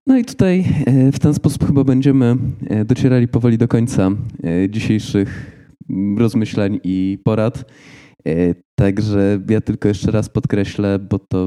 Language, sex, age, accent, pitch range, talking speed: Polish, male, 20-39, native, 95-130 Hz, 125 wpm